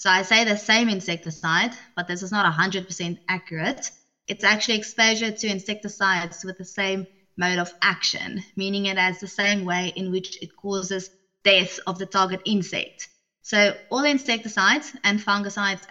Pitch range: 180-210 Hz